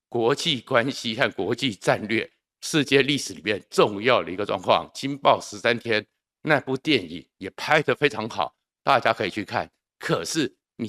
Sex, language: male, Chinese